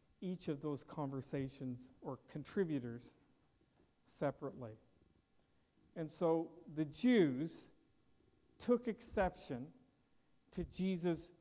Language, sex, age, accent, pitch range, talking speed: English, male, 50-69, American, 140-195 Hz, 80 wpm